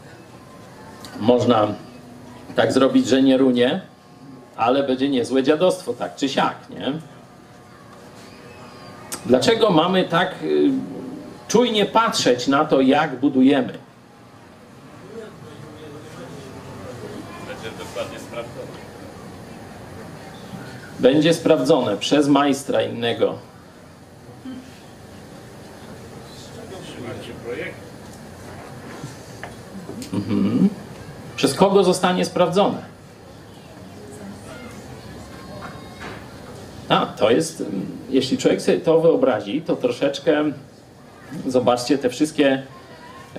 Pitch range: 120-165 Hz